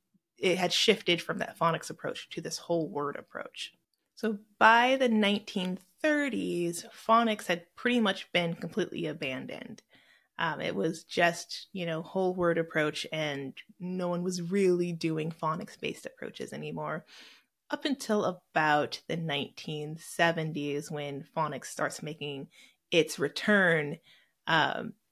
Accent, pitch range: American, 155-190 Hz